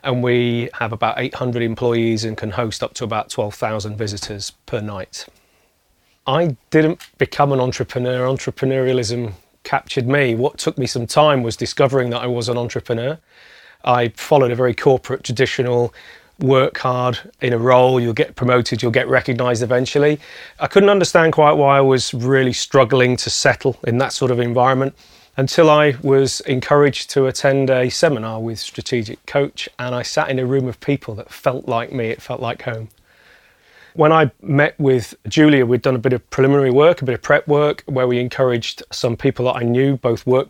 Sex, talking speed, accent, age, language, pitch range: male, 185 wpm, British, 30-49, English, 120-140 Hz